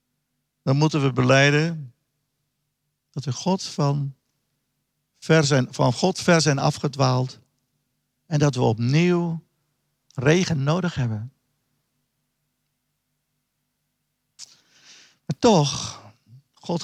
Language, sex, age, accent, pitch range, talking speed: Dutch, male, 50-69, Dutch, 130-170 Hz, 80 wpm